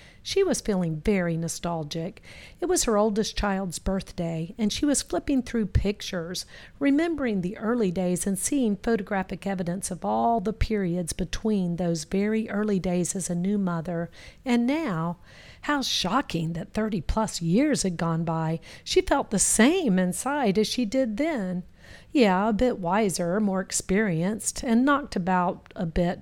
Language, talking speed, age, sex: English, 155 wpm, 50-69, female